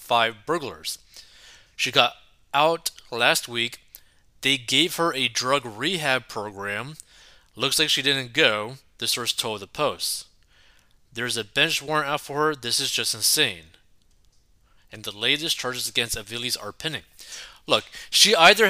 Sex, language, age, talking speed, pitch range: male, English, 20-39, 150 wpm, 115-150 Hz